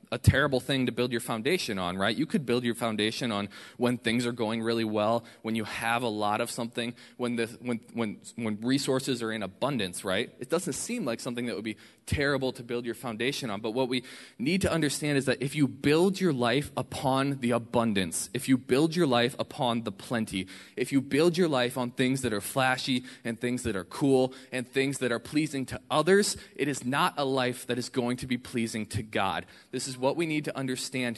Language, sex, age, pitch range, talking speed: English, male, 20-39, 110-130 Hz, 225 wpm